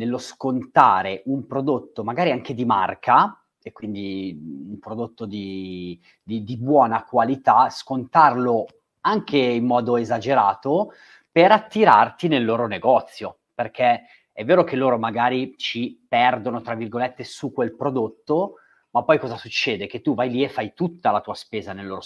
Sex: male